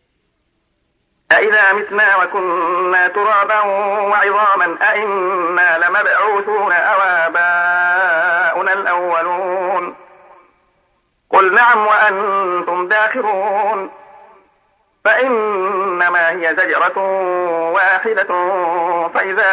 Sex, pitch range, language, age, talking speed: male, 170-190 Hz, Arabic, 50-69, 55 wpm